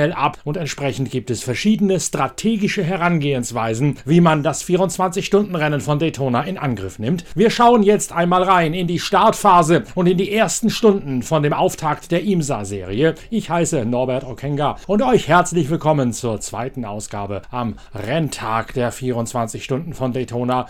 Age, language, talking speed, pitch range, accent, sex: 40-59, German, 145 wpm, 145-185 Hz, German, male